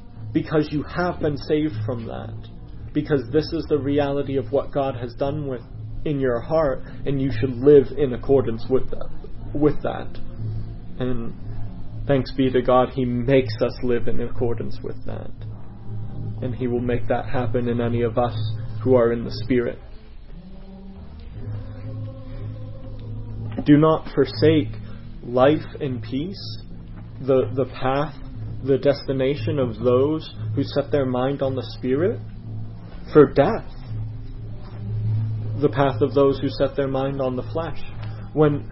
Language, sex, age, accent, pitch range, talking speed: English, male, 30-49, American, 110-140 Hz, 140 wpm